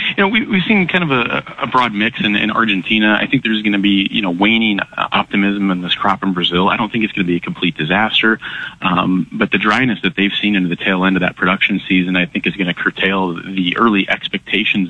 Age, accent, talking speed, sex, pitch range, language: 30-49, American, 255 wpm, male, 90-100 Hz, English